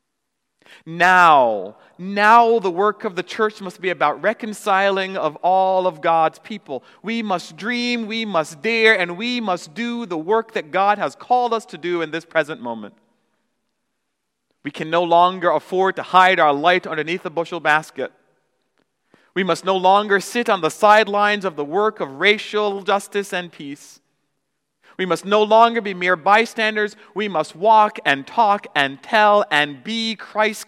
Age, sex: 40-59, male